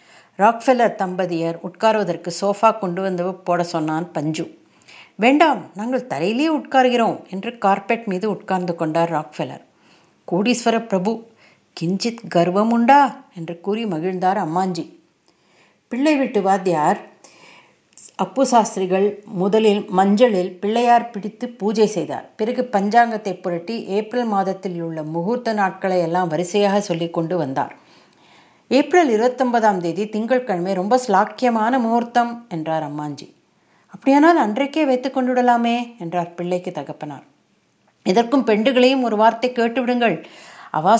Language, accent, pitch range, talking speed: Tamil, native, 180-235 Hz, 105 wpm